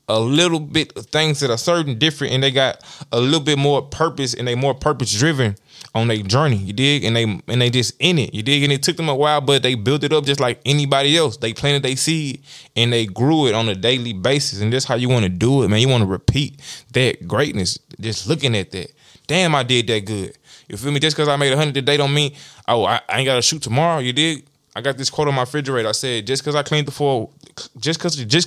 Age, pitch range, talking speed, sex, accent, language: 20-39, 120-145 Hz, 265 wpm, male, American, English